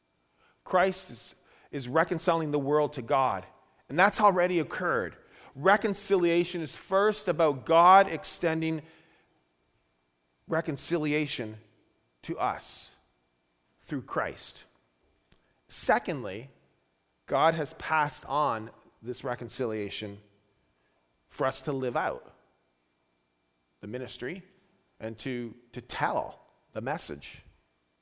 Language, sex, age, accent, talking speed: English, male, 40-59, American, 90 wpm